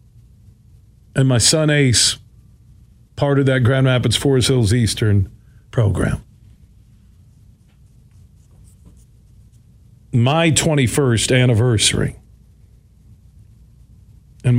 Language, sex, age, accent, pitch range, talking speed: English, male, 50-69, American, 110-135 Hz, 70 wpm